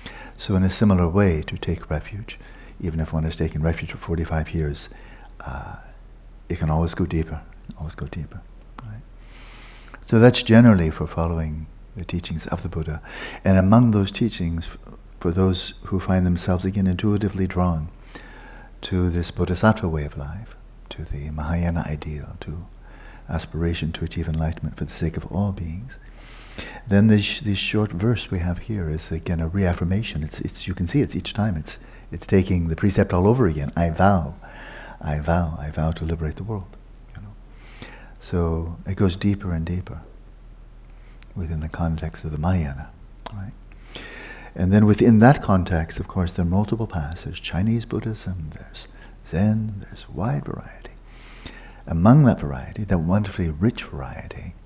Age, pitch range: 60-79, 80-105 Hz